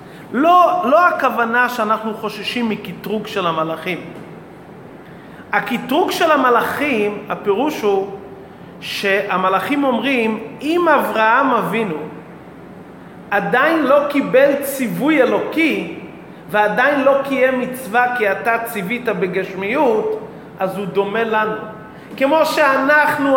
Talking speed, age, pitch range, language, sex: 95 wpm, 40-59, 205-270 Hz, Hebrew, male